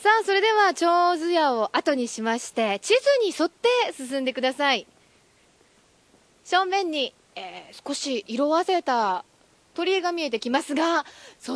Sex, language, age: female, Japanese, 20-39